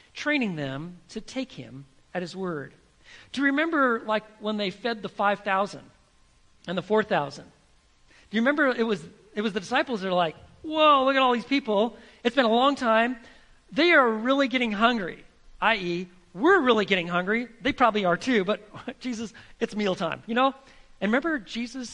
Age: 40-59